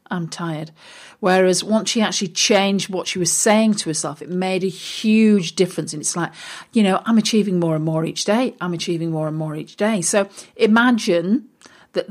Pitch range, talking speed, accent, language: 170-210 Hz, 200 wpm, British, English